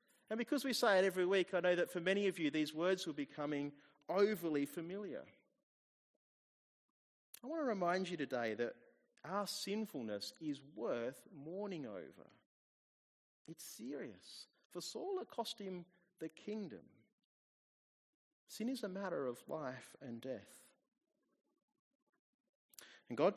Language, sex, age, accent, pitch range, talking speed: English, male, 30-49, Australian, 130-195 Hz, 135 wpm